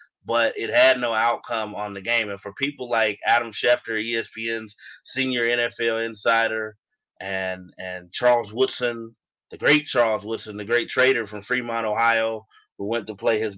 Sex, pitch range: male, 105-120 Hz